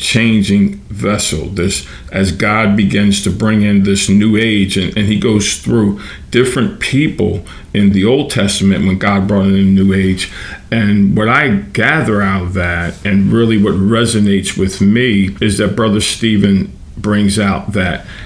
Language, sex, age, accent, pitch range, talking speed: English, male, 50-69, American, 95-105 Hz, 165 wpm